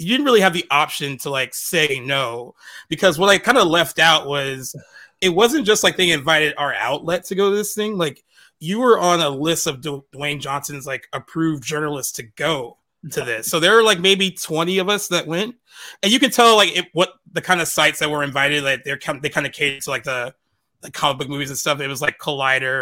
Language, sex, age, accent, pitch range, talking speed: English, male, 20-39, American, 145-180 Hz, 235 wpm